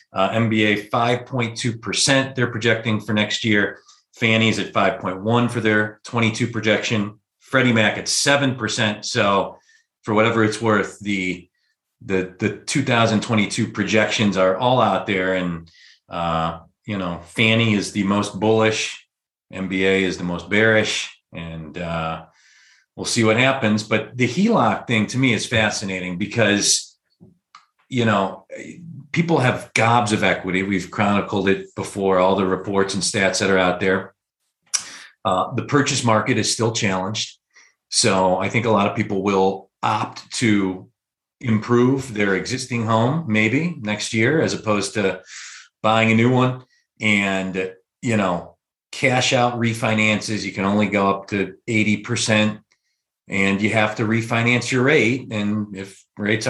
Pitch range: 95-115 Hz